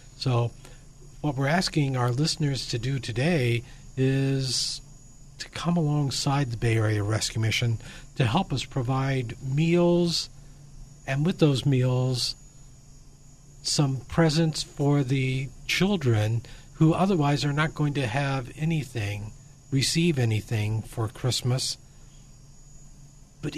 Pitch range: 125-150 Hz